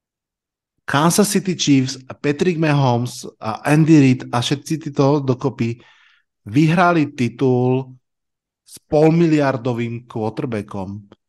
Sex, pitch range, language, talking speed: male, 115-135 Hz, Slovak, 95 wpm